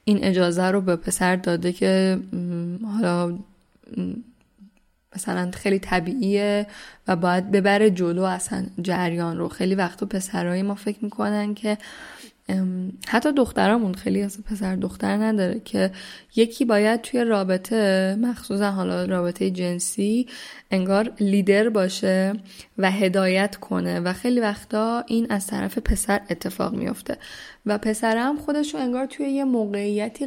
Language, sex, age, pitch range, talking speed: Persian, female, 10-29, 185-215 Hz, 125 wpm